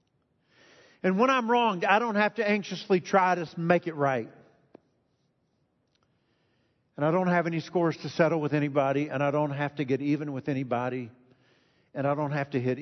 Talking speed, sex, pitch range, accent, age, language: 185 wpm, male, 130-185 Hz, American, 50-69, English